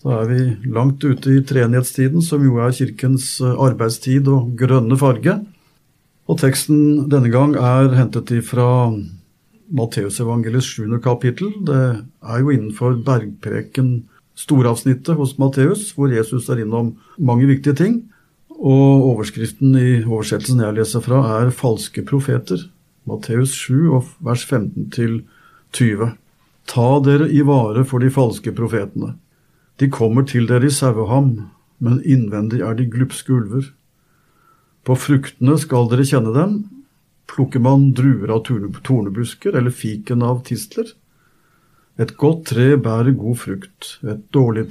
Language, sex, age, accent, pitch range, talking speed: English, male, 50-69, Norwegian, 120-140 Hz, 130 wpm